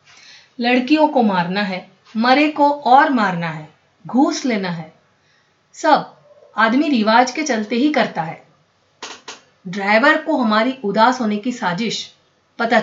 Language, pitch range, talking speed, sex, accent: Hindi, 195-265 Hz, 130 wpm, female, native